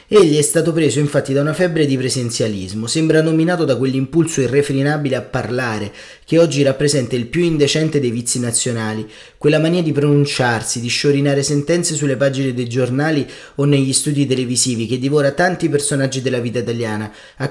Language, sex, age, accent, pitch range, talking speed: Italian, male, 30-49, native, 115-150 Hz, 170 wpm